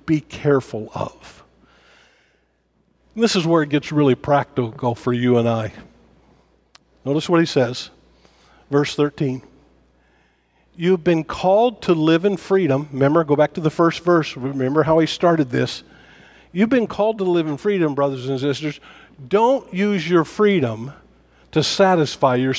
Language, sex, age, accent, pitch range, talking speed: English, male, 50-69, American, 125-180 Hz, 150 wpm